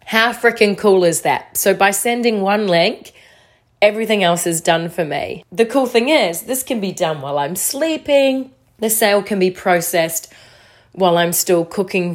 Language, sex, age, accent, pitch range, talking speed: English, female, 30-49, Australian, 180-230 Hz, 180 wpm